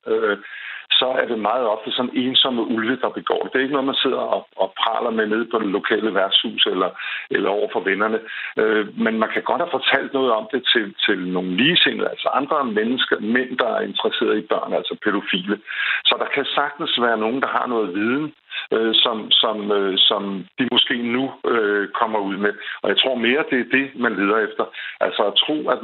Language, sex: Danish, male